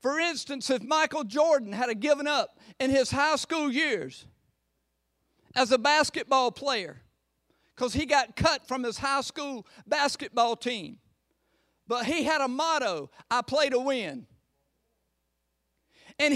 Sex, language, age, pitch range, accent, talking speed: male, English, 50-69, 245-320 Hz, American, 135 wpm